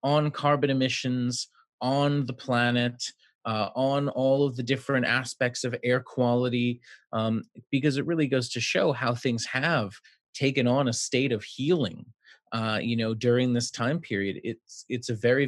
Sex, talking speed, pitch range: male, 165 wpm, 115-135 Hz